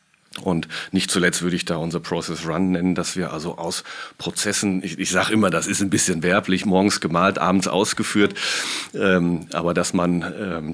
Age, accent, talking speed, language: 40-59, German, 185 wpm, German